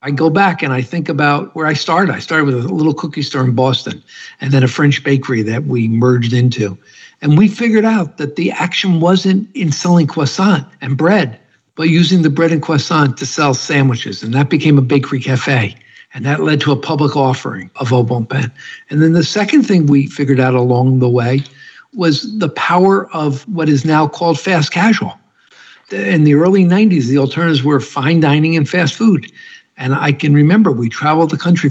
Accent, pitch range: American, 135-175 Hz